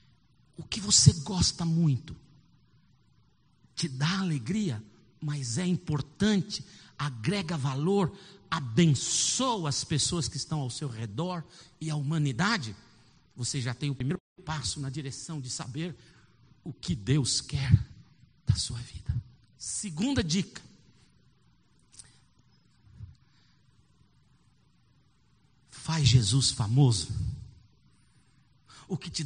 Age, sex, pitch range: 50-69, male, 135-205 Hz